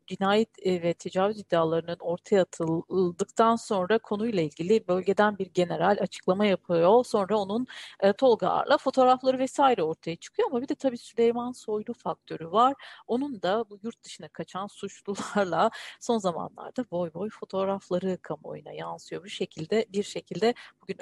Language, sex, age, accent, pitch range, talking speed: Turkish, female, 40-59, native, 175-235 Hz, 135 wpm